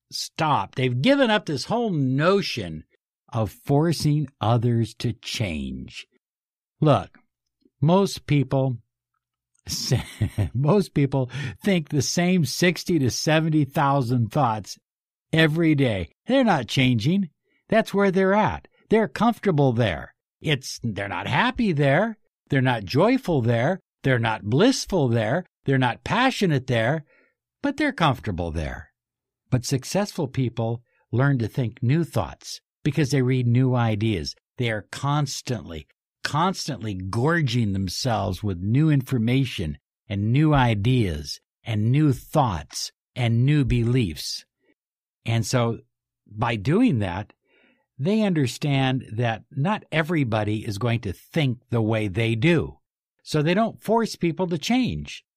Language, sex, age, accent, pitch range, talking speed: English, male, 60-79, American, 115-160 Hz, 125 wpm